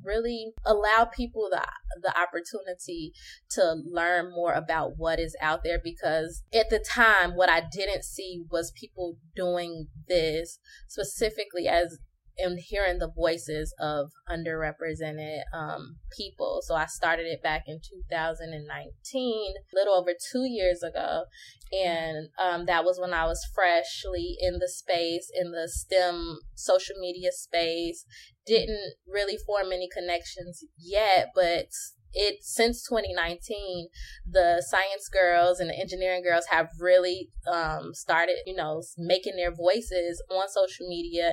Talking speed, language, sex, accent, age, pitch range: 140 wpm, English, female, American, 20-39, 165-190 Hz